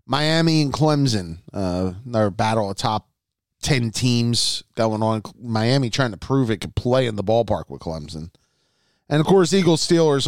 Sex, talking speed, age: male, 165 wpm, 30-49